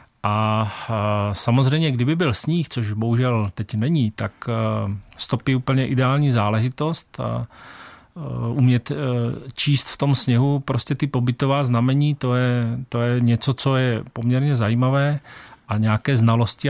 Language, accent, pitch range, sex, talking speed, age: Czech, native, 115-135 Hz, male, 130 wpm, 40-59